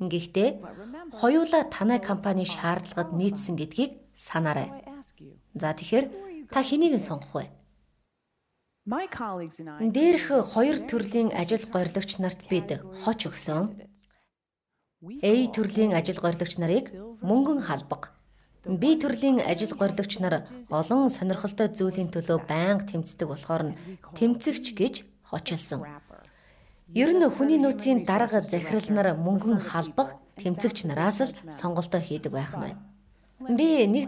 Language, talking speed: English, 110 wpm